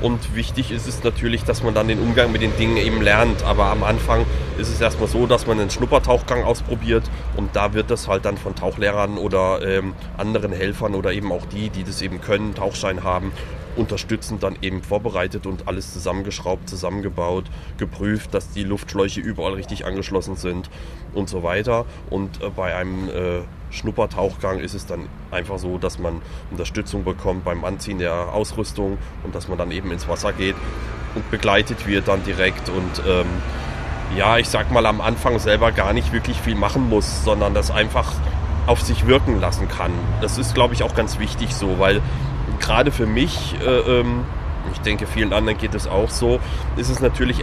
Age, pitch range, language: 30-49, 85-110 Hz, German